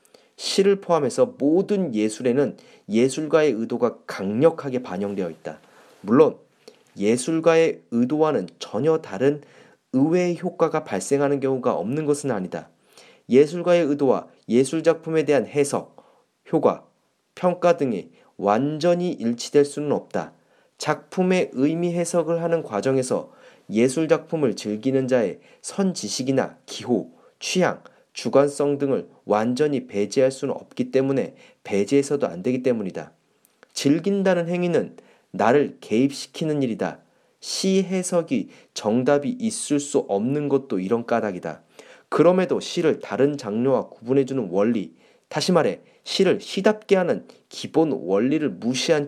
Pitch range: 130-175 Hz